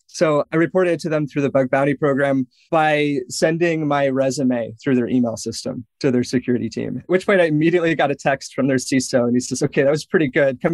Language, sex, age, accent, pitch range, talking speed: English, male, 20-39, American, 125-150 Hz, 230 wpm